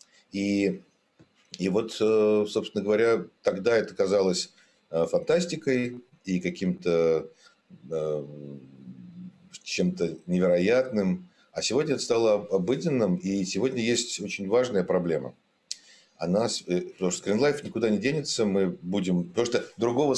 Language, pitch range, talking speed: Russian, 85-105 Hz, 105 wpm